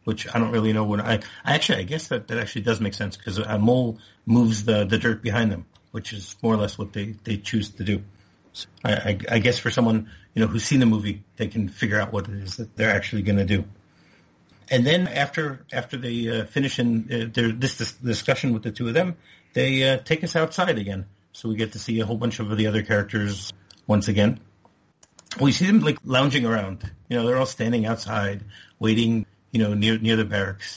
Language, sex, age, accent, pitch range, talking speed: English, male, 50-69, American, 105-120 Hz, 230 wpm